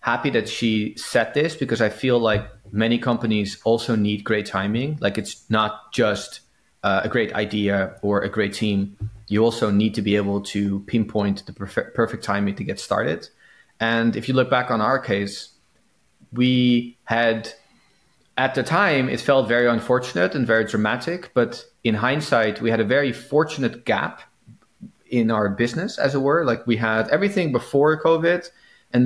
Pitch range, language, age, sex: 110-130 Hz, English, 30-49, male